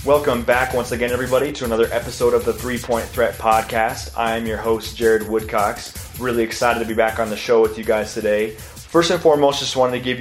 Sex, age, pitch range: male, 20-39, 110-120 Hz